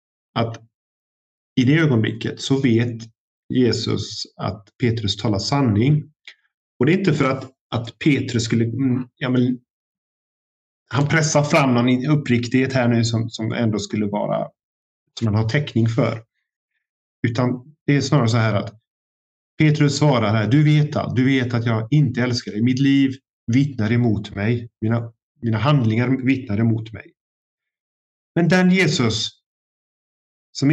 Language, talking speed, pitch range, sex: Swedish, 145 wpm, 110-135 Hz, male